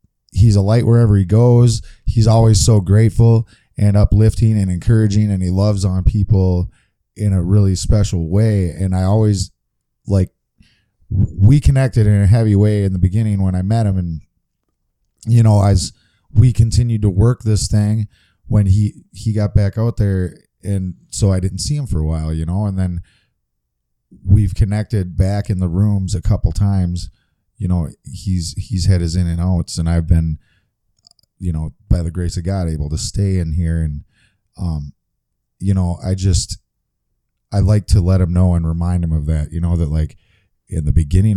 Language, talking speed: English, 185 wpm